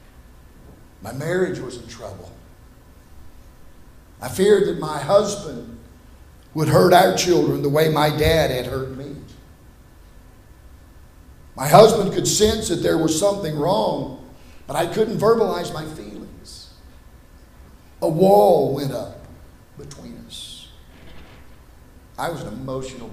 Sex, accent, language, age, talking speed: male, American, English, 50-69, 120 wpm